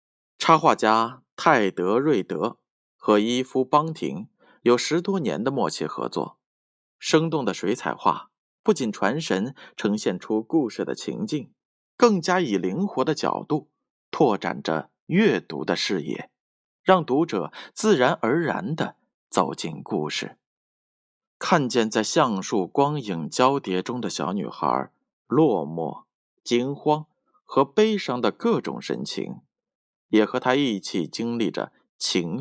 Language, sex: Chinese, male